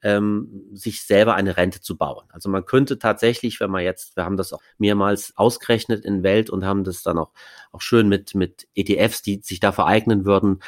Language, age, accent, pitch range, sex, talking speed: German, 30-49, German, 95-115 Hz, male, 210 wpm